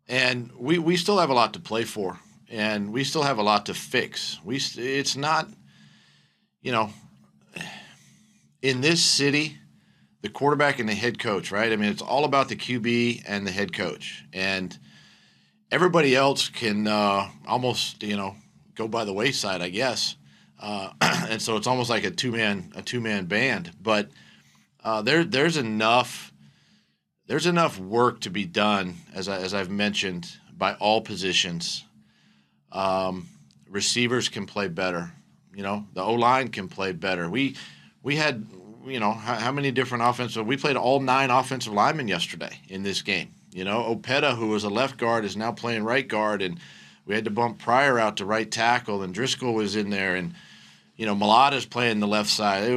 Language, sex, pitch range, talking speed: English, male, 95-125 Hz, 180 wpm